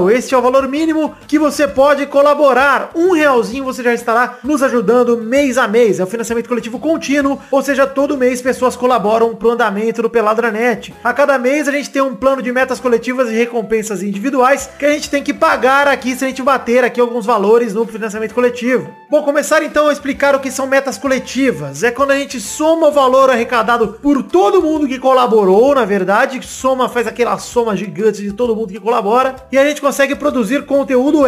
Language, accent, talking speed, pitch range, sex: Portuguese, Brazilian, 205 wpm, 230-280 Hz, male